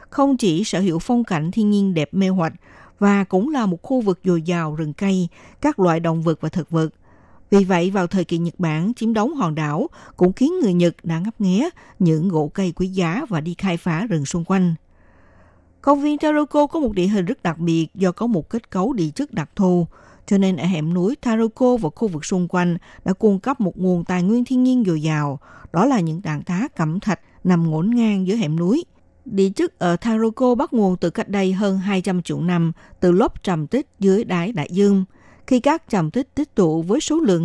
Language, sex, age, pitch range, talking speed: Vietnamese, female, 60-79, 170-225 Hz, 230 wpm